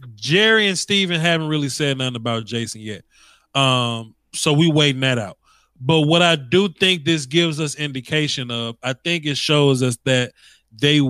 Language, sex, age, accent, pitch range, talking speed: English, male, 20-39, American, 125-160 Hz, 180 wpm